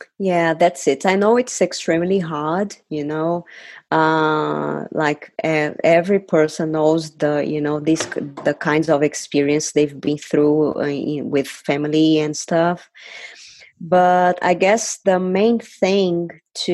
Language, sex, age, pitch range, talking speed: English, female, 20-39, 160-195 Hz, 145 wpm